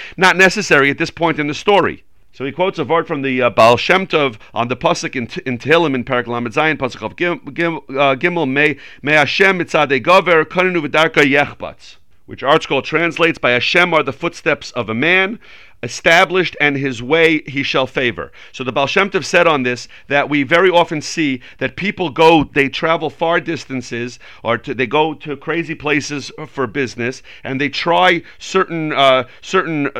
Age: 40-59